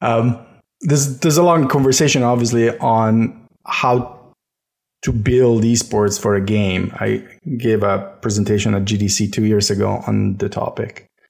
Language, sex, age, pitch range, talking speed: English, male, 30-49, 105-130 Hz, 140 wpm